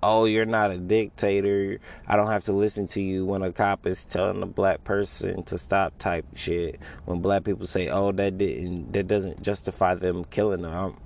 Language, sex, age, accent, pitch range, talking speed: English, male, 20-39, American, 90-115 Hz, 200 wpm